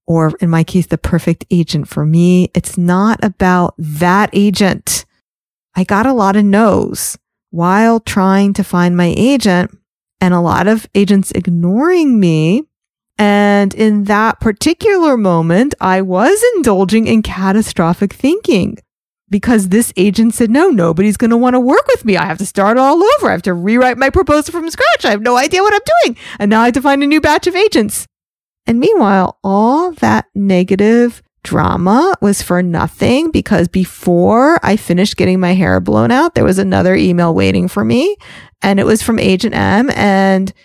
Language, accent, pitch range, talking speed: English, American, 190-260 Hz, 180 wpm